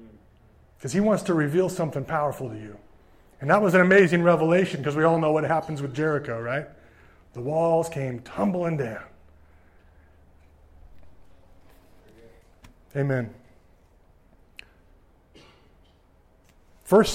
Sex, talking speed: male, 110 wpm